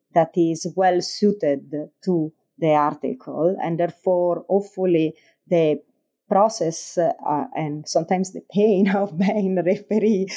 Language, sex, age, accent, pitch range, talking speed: English, female, 30-49, Italian, 150-200 Hz, 120 wpm